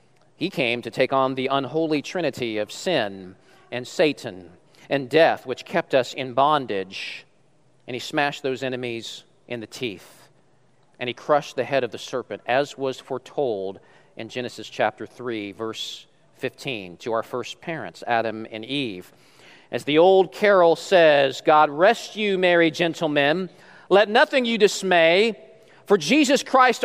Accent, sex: American, male